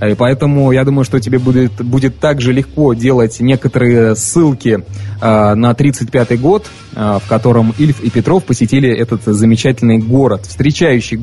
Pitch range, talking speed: 105-135 Hz, 140 wpm